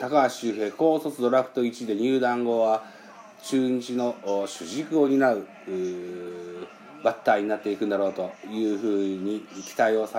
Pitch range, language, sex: 105-175 Hz, Japanese, male